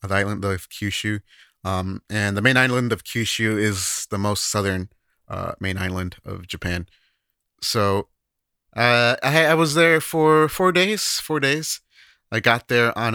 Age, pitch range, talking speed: 30-49, 95-125 Hz, 160 wpm